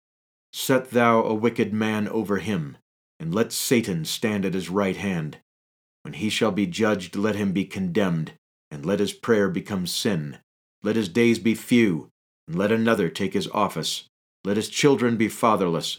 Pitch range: 90-115 Hz